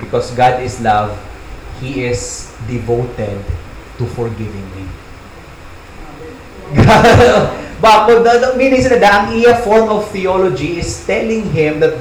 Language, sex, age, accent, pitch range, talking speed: English, male, 30-49, Filipino, 135-200 Hz, 115 wpm